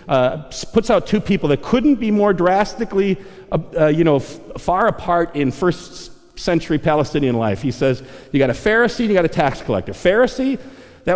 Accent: American